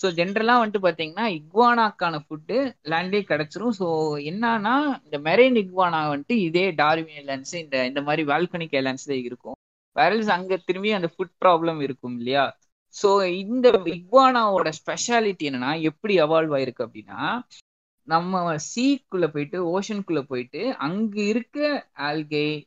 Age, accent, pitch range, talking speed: 20-39, native, 155-220 Hz, 120 wpm